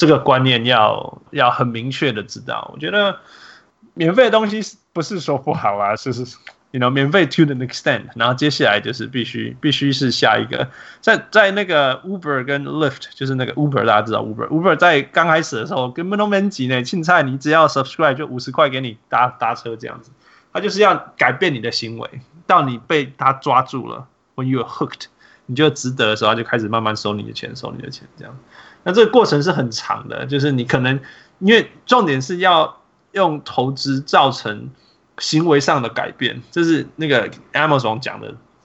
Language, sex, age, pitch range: Chinese, male, 20-39, 125-160 Hz